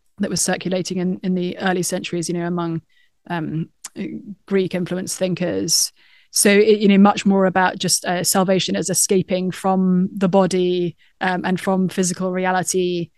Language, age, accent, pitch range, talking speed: English, 20-39, British, 185-205 Hz, 160 wpm